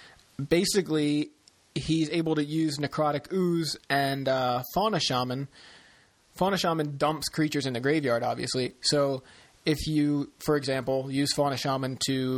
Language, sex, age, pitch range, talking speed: English, male, 30-49, 125-150 Hz, 135 wpm